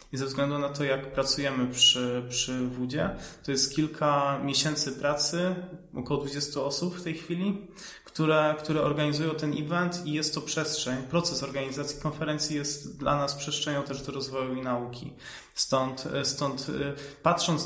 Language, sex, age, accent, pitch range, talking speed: Polish, male, 20-39, native, 135-150 Hz, 155 wpm